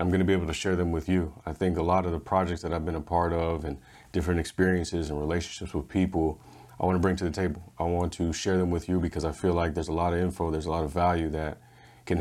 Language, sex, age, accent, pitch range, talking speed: English, male, 30-49, American, 80-95 Hz, 295 wpm